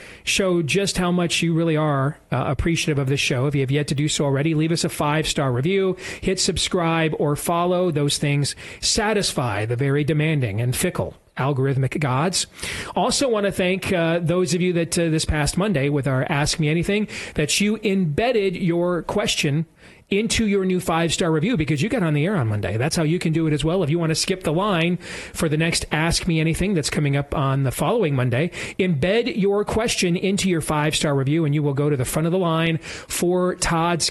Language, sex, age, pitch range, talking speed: English, male, 40-59, 145-185 Hz, 215 wpm